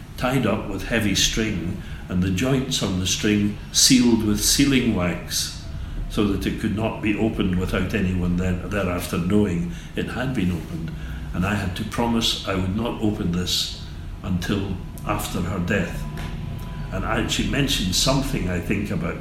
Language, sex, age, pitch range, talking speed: English, male, 60-79, 85-105 Hz, 160 wpm